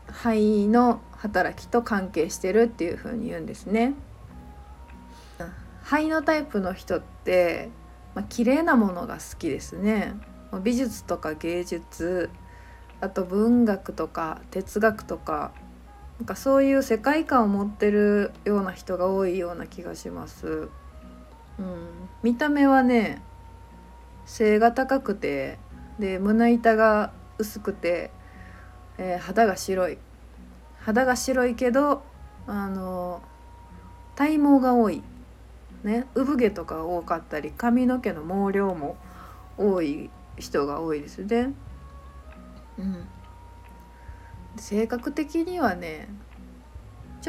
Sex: female